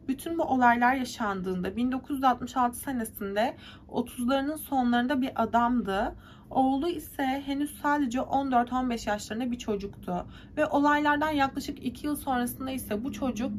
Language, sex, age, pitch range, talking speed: Turkish, female, 30-49, 235-290 Hz, 120 wpm